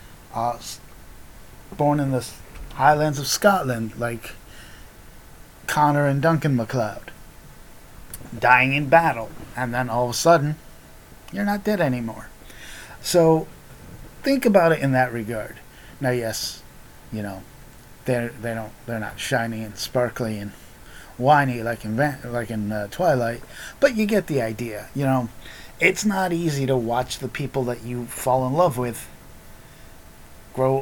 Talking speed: 140 wpm